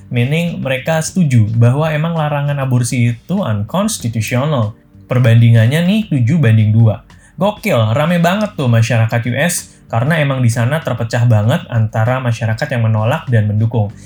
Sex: male